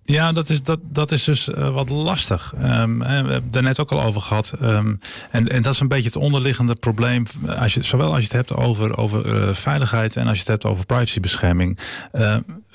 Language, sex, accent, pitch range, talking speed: Dutch, male, Dutch, 100-125 Hz, 225 wpm